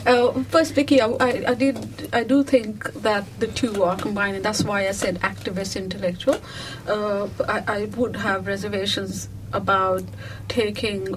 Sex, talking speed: female, 150 wpm